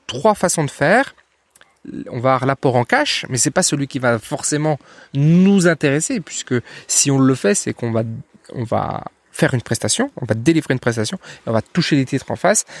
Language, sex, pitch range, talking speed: French, male, 125-175 Hz, 205 wpm